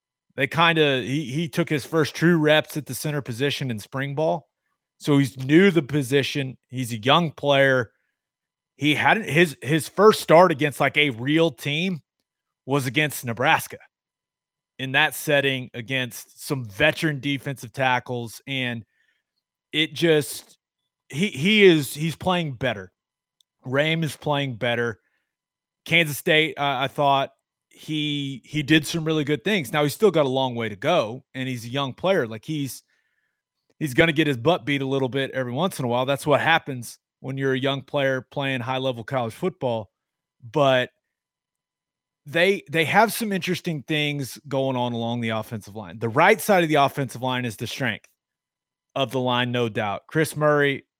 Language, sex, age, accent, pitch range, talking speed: English, male, 30-49, American, 130-155 Hz, 170 wpm